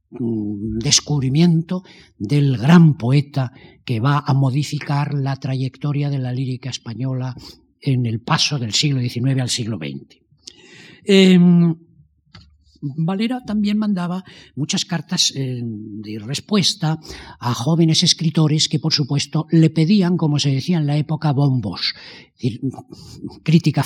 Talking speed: 125 wpm